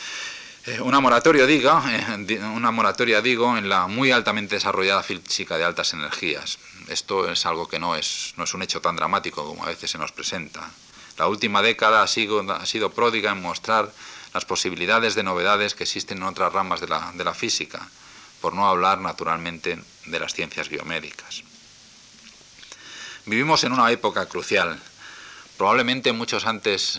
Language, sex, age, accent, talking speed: Spanish, male, 40-59, Spanish, 150 wpm